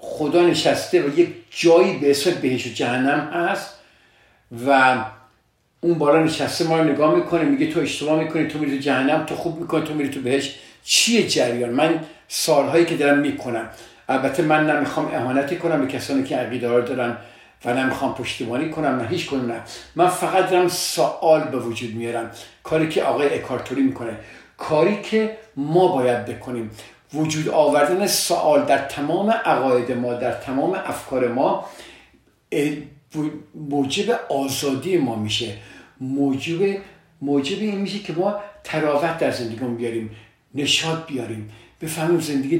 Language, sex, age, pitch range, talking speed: Persian, male, 50-69, 125-165 Hz, 145 wpm